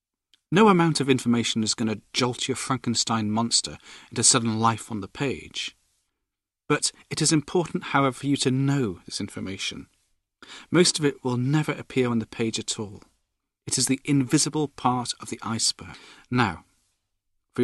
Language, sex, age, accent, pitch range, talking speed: English, male, 40-59, British, 110-140 Hz, 165 wpm